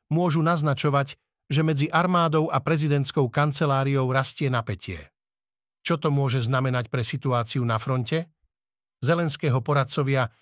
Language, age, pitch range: Slovak, 50-69, 135-155 Hz